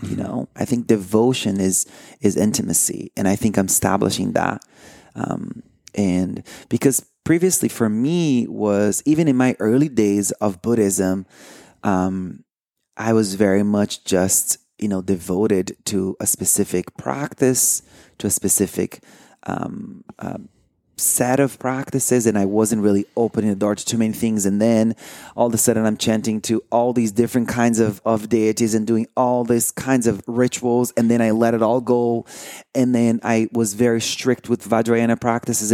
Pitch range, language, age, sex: 100-120 Hz, English, 30-49, male